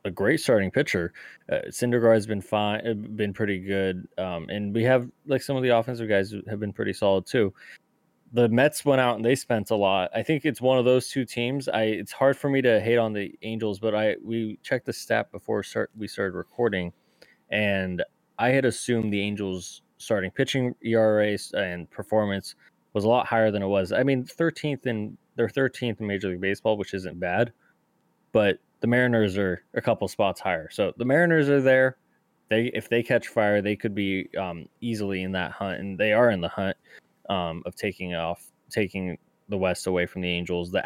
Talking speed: 205 wpm